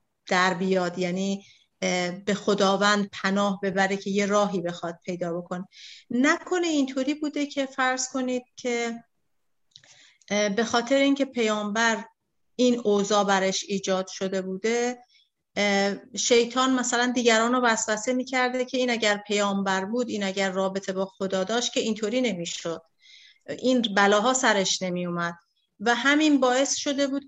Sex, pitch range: female, 195-250 Hz